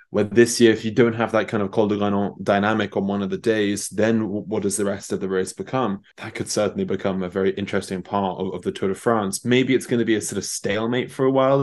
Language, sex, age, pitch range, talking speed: English, male, 20-39, 100-115 Hz, 275 wpm